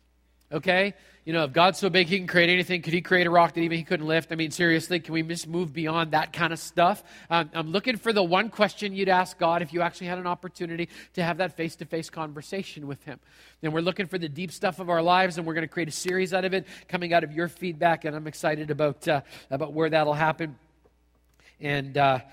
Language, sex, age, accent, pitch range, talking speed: English, male, 40-59, American, 160-195 Hz, 245 wpm